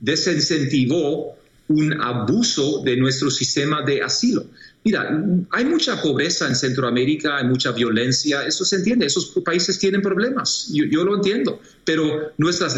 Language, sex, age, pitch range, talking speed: Spanish, male, 40-59, 135-185 Hz, 140 wpm